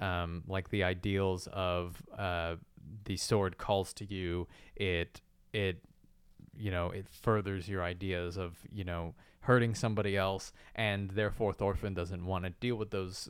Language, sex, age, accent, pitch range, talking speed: English, male, 20-39, American, 95-115 Hz, 155 wpm